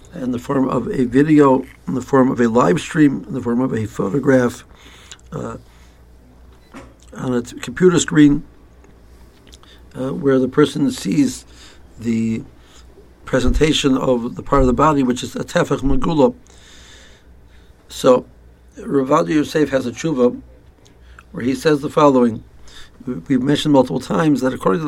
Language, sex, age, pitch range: English, male, 60-79, 90-145 Hz